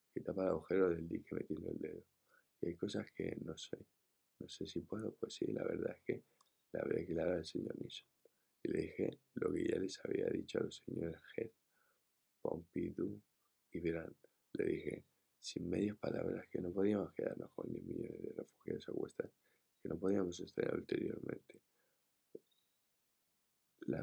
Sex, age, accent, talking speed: male, 20-39, Spanish, 180 wpm